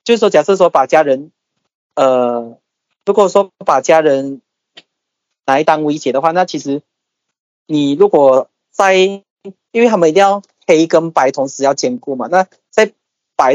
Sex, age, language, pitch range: male, 20-39, Chinese, 140-195 Hz